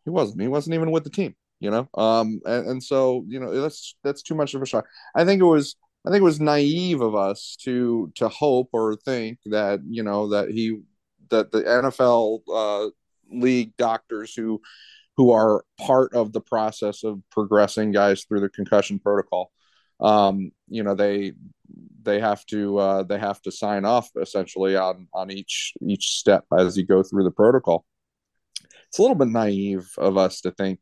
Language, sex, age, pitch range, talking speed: English, male, 30-49, 95-120 Hz, 190 wpm